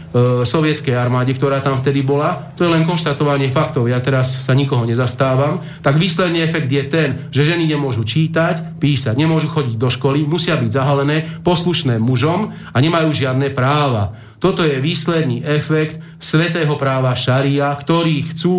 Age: 40-59